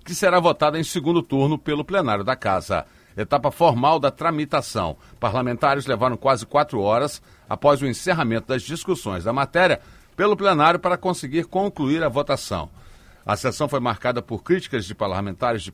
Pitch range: 115-155 Hz